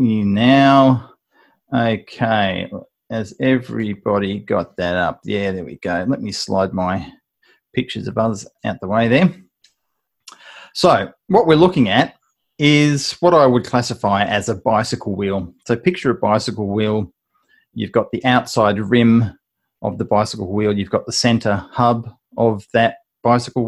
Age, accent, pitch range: 30-49, Australian, 105-135 Hz